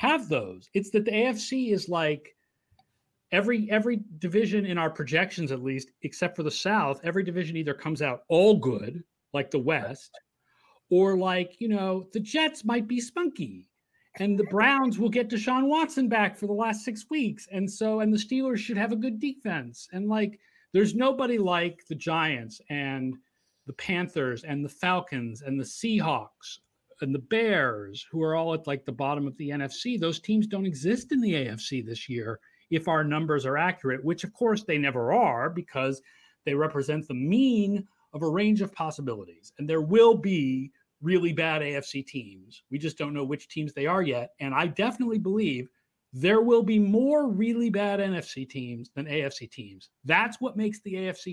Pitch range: 145-215 Hz